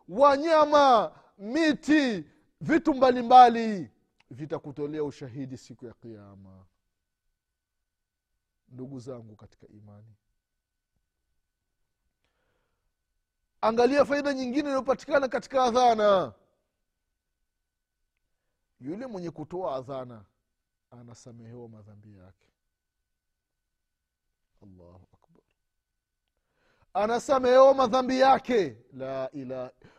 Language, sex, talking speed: Swahili, male, 65 wpm